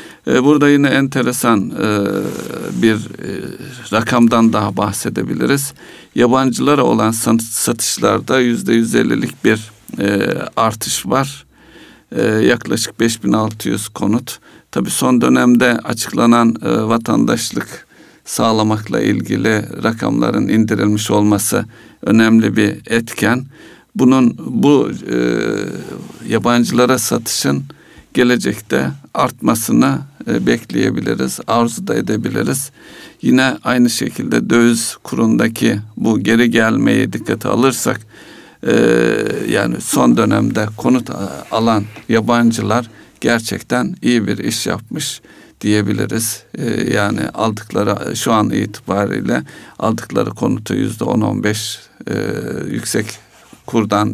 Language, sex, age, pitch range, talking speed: Turkish, male, 60-79, 105-120 Hz, 95 wpm